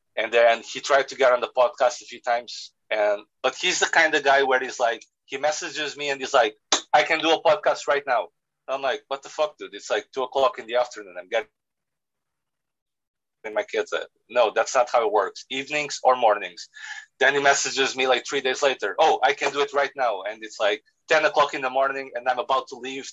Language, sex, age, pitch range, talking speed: English, male, 40-59, 125-150 Hz, 230 wpm